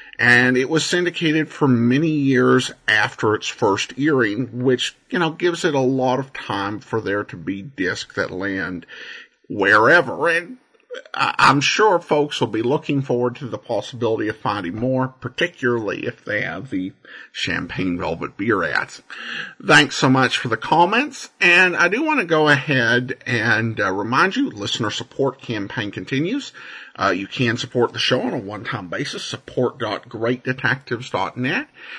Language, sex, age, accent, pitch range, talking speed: English, male, 50-69, American, 130-175 Hz, 160 wpm